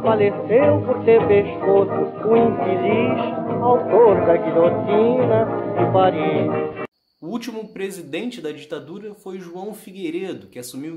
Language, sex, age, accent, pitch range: Portuguese, male, 20-39, Brazilian, 155-220 Hz